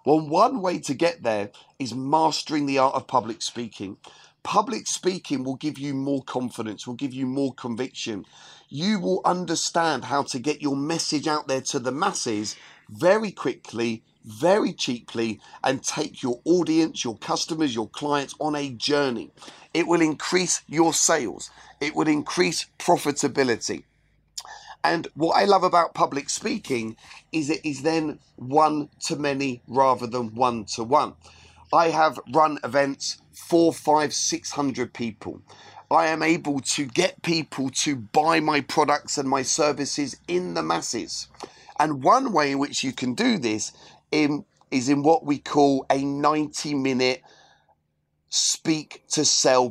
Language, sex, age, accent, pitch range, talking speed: English, male, 40-59, British, 125-160 Hz, 145 wpm